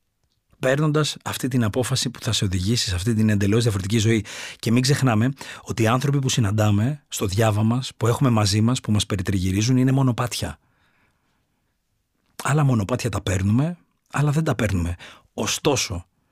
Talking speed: 160 wpm